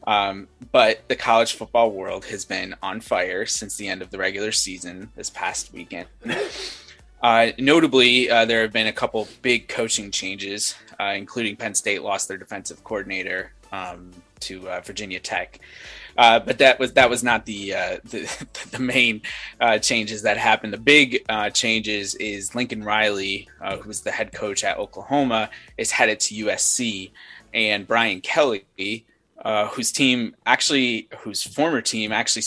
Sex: male